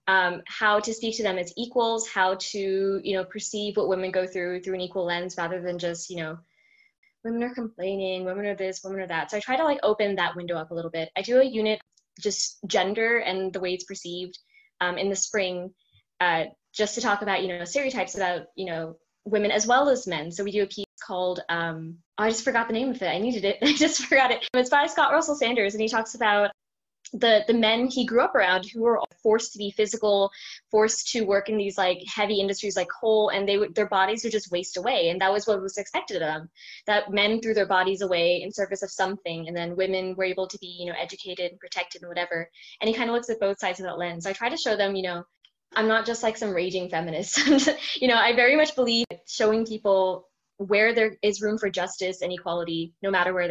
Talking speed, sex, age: 245 wpm, female, 20-39